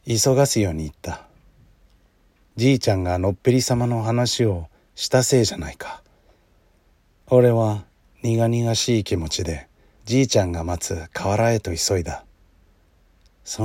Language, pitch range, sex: Japanese, 85-110 Hz, male